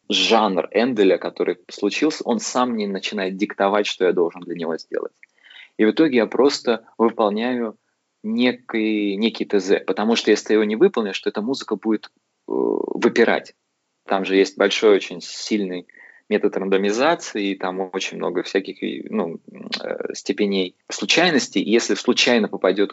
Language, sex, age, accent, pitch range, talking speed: Russian, male, 20-39, native, 95-115 Hz, 145 wpm